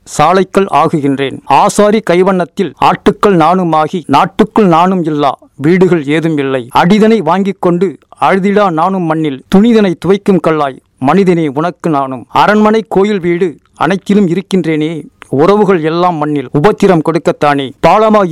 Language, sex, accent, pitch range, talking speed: Tamil, male, native, 160-200 Hz, 115 wpm